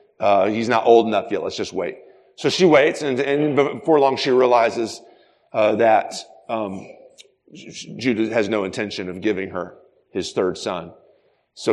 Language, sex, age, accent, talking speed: English, male, 40-59, American, 170 wpm